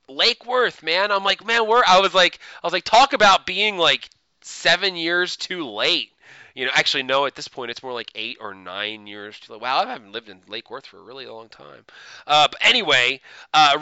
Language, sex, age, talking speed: English, male, 20-39, 220 wpm